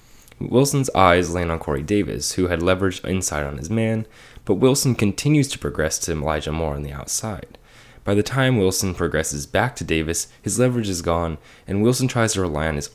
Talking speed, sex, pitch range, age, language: 200 wpm, male, 80-115 Hz, 10-29, English